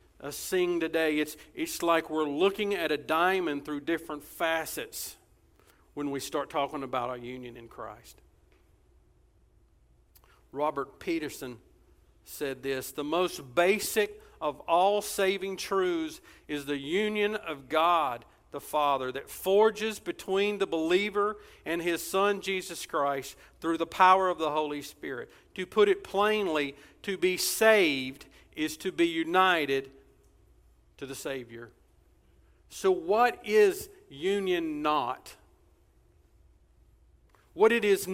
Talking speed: 125 wpm